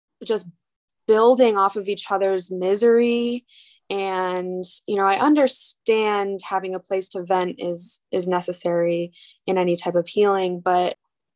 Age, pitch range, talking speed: 20-39, 185-225 Hz, 135 wpm